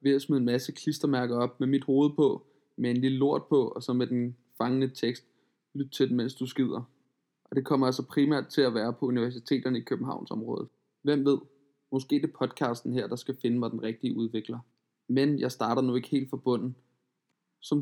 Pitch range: 125-150 Hz